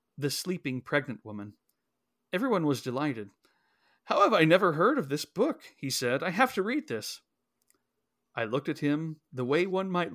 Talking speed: 175 wpm